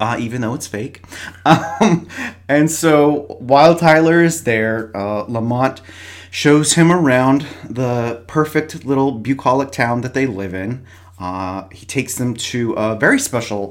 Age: 30-49